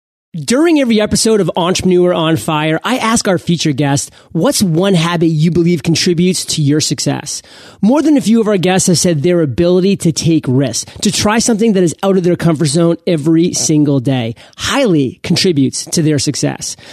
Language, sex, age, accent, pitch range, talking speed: English, male, 30-49, American, 160-210 Hz, 190 wpm